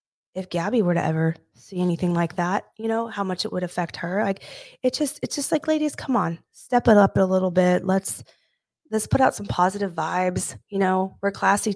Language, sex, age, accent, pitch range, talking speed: English, female, 20-39, American, 165-195 Hz, 220 wpm